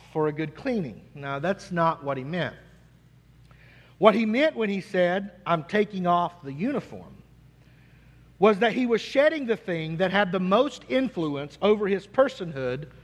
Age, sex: 50-69, male